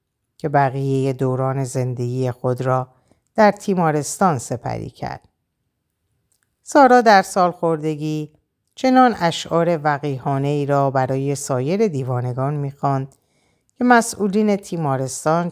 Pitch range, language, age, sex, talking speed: 130-175 Hz, Persian, 50-69, female, 95 wpm